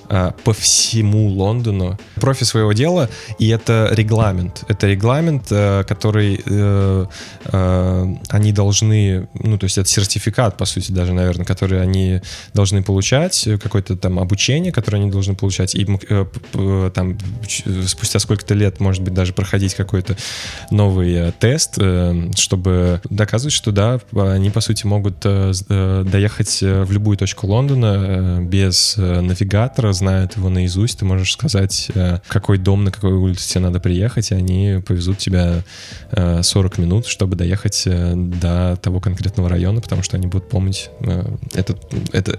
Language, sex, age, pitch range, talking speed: Russian, male, 20-39, 95-105 Hz, 145 wpm